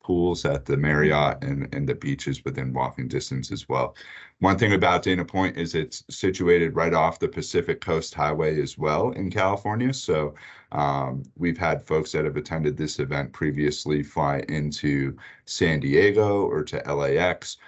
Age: 30-49